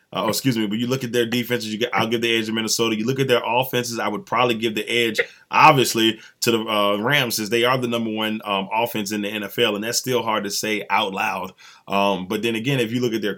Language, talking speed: English, 265 wpm